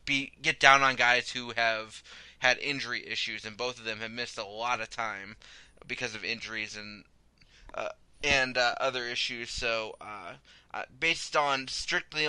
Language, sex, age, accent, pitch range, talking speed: English, male, 20-39, American, 115-135 Hz, 160 wpm